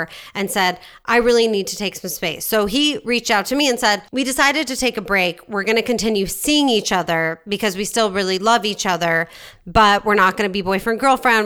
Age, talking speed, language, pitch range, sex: 30-49, 230 wpm, English, 180-230 Hz, female